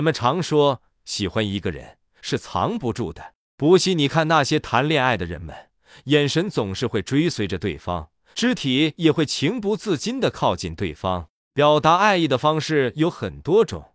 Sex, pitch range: male, 125-175 Hz